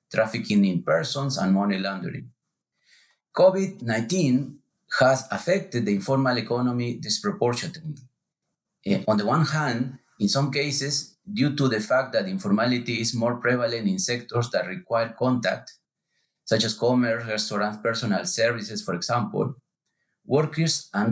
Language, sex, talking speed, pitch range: English, male, 125 wpm, 115-145 Hz